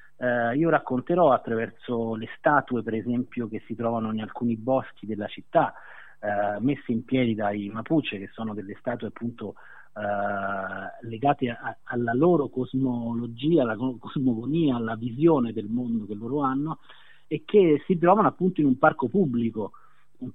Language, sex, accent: Italian, male, native